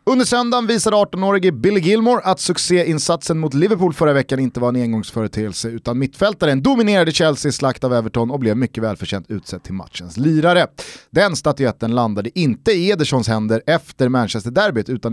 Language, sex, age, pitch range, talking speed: Swedish, male, 30-49, 120-180 Hz, 165 wpm